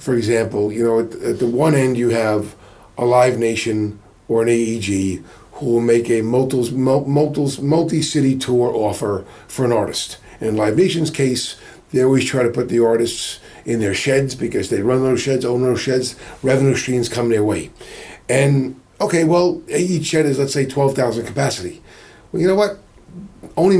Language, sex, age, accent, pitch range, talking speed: English, male, 40-59, American, 120-155 Hz, 175 wpm